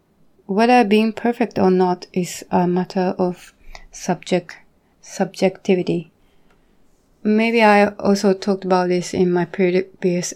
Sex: female